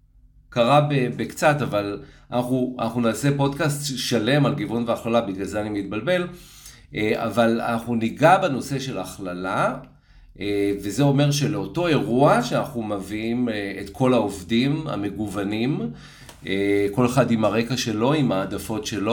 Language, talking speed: Hebrew, 120 wpm